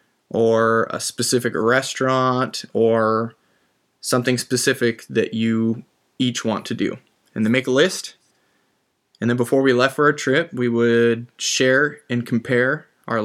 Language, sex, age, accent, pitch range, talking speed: English, male, 20-39, American, 115-130 Hz, 145 wpm